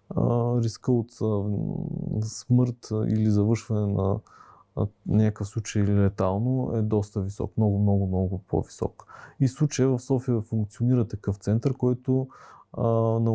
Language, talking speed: Bulgarian, 115 wpm